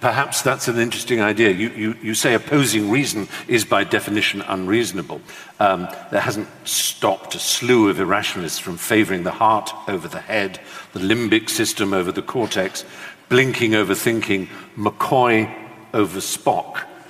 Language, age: English, 50-69